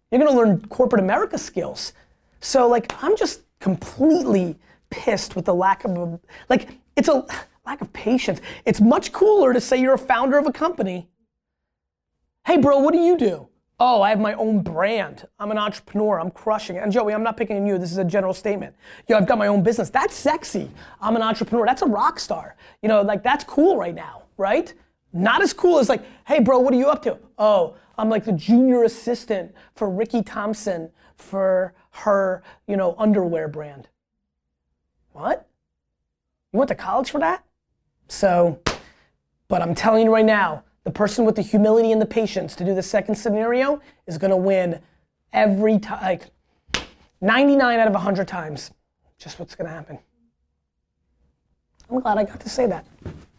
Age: 20-39